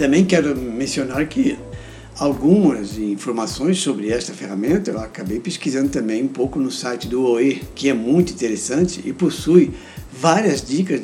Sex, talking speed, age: male, 145 wpm, 60-79